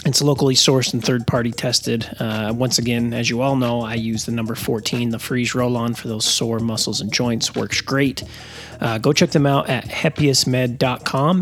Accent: American